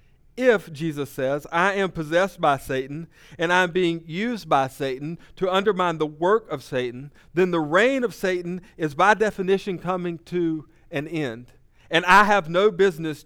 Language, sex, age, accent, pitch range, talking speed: English, male, 50-69, American, 145-185 Hz, 170 wpm